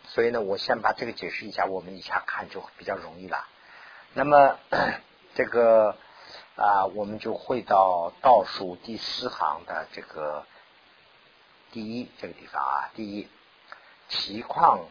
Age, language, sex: 50-69, Chinese, male